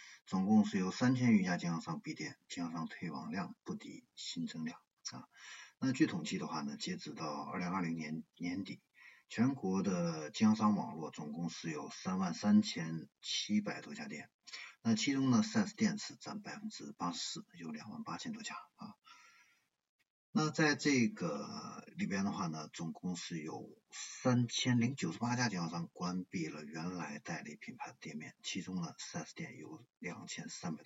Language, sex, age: Chinese, male, 50-69